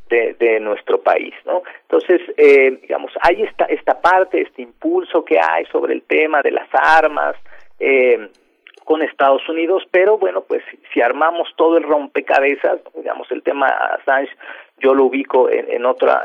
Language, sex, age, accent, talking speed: Spanish, male, 40-59, Mexican, 165 wpm